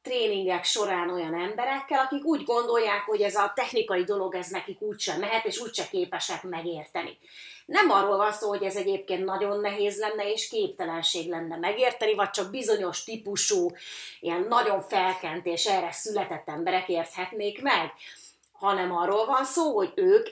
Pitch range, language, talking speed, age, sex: 180-270 Hz, Hungarian, 160 wpm, 30-49, female